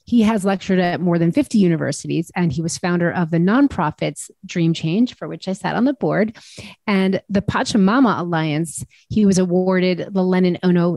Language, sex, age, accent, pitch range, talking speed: English, female, 30-49, American, 165-205 Hz, 185 wpm